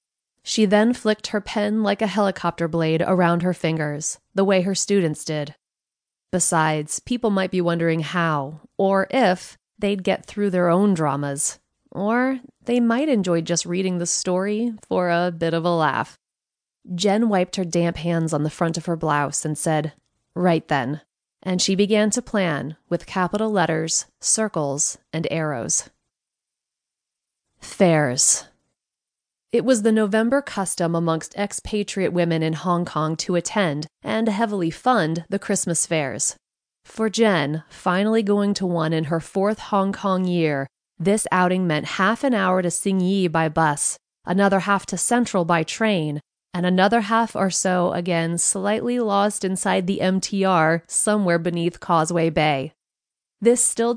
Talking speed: 150 wpm